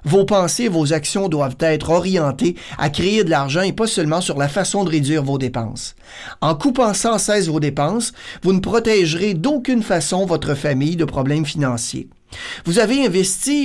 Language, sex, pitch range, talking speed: French, male, 150-200 Hz, 180 wpm